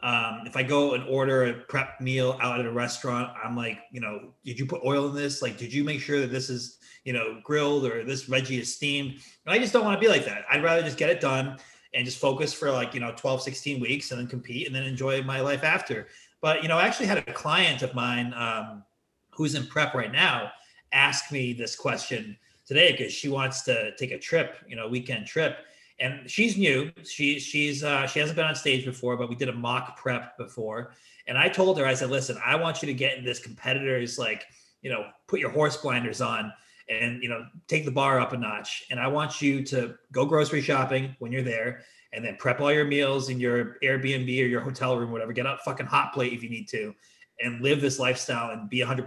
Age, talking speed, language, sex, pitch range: 30-49, 240 wpm, English, male, 120-140 Hz